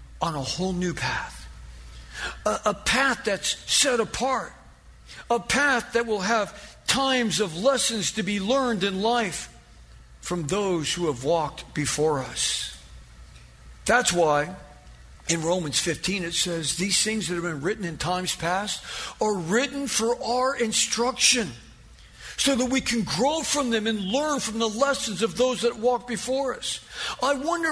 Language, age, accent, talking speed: English, 50-69, American, 155 wpm